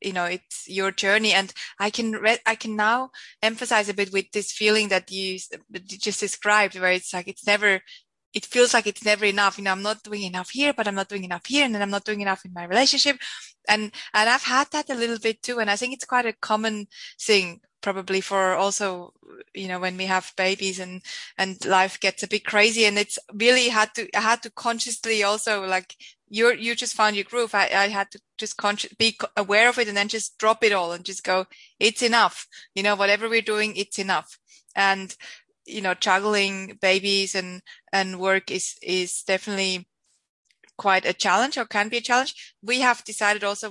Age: 20-39